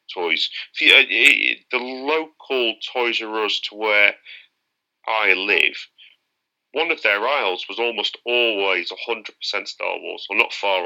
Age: 30-49